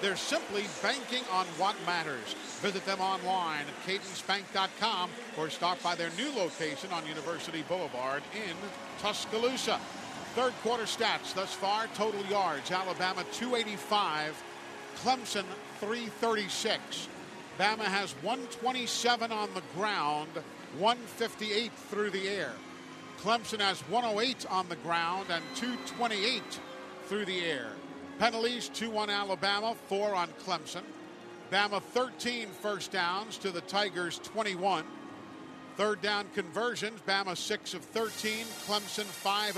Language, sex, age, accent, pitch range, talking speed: English, male, 50-69, American, 190-225 Hz, 115 wpm